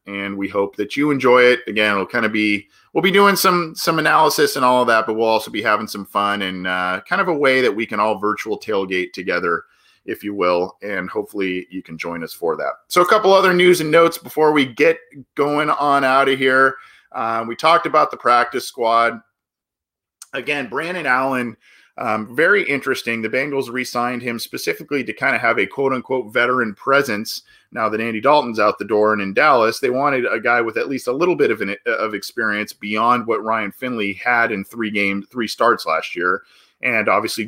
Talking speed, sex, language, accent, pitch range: 210 wpm, male, English, American, 100-135 Hz